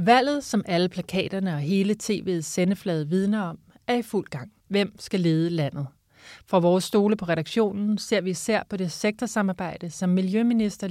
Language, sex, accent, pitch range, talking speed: Danish, male, native, 170-210 Hz, 170 wpm